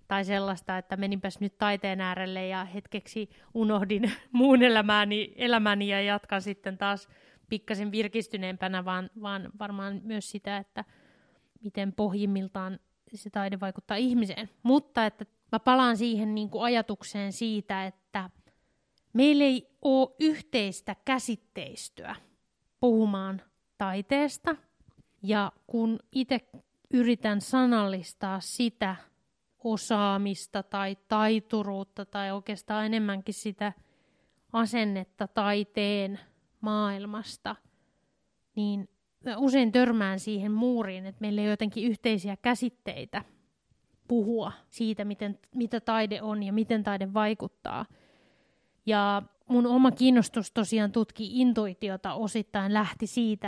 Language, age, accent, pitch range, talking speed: Finnish, 20-39, native, 200-230 Hz, 105 wpm